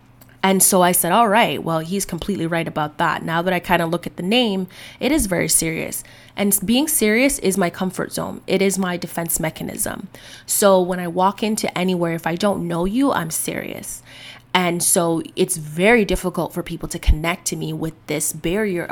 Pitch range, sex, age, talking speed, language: 165-190 Hz, female, 20-39, 205 wpm, English